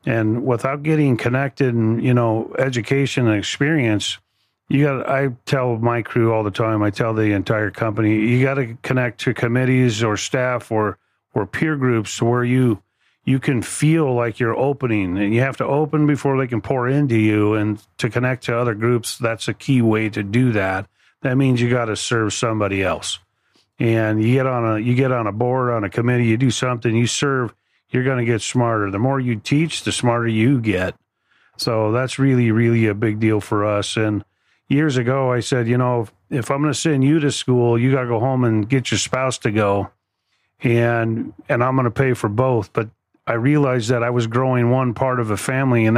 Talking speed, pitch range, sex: 215 wpm, 110-130 Hz, male